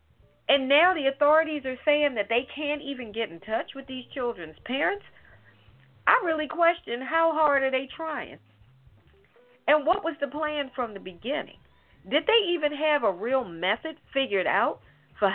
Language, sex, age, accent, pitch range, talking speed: English, female, 50-69, American, 220-295 Hz, 170 wpm